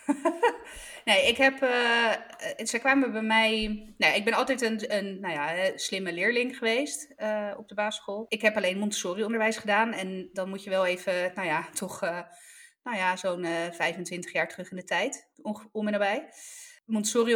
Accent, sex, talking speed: Dutch, female, 185 wpm